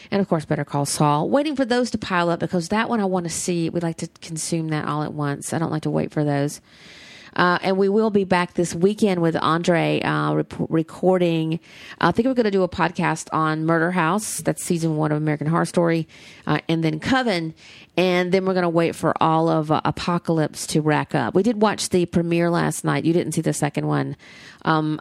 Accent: American